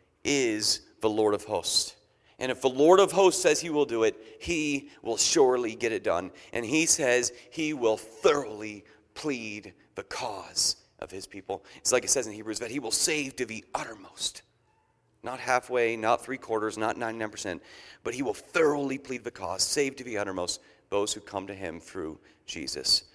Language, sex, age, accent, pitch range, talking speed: English, male, 40-59, American, 115-165 Hz, 185 wpm